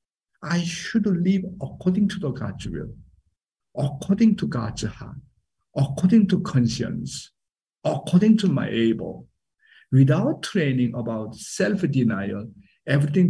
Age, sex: 60-79, male